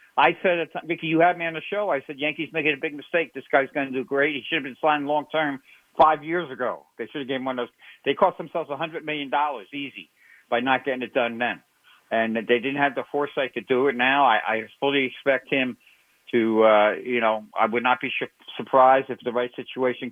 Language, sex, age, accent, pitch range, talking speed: English, male, 50-69, American, 120-150 Hz, 235 wpm